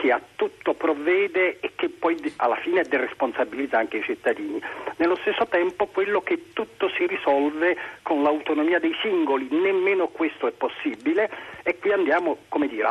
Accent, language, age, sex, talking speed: native, Italian, 50-69, male, 165 wpm